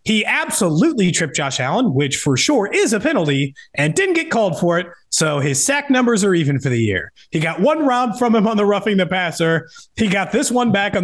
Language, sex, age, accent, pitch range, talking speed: English, male, 30-49, American, 140-220 Hz, 235 wpm